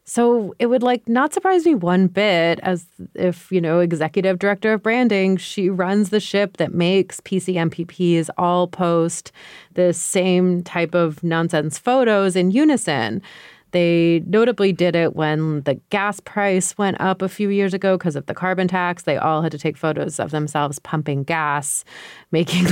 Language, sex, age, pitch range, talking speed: English, female, 30-49, 155-190 Hz, 170 wpm